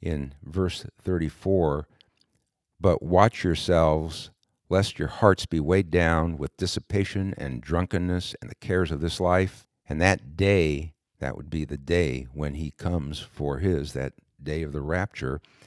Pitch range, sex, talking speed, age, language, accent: 80-105 Hz, male, 155 wpm, 60-79, English, American